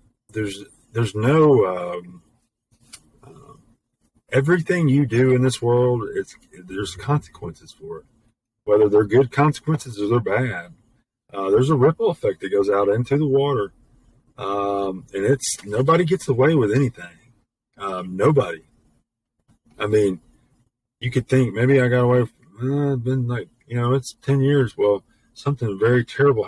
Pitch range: 105-135 Hz